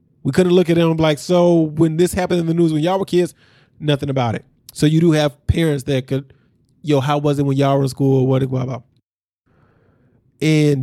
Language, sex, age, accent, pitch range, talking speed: English, male, 20-39, American, 125-155 Hz, 225 wpm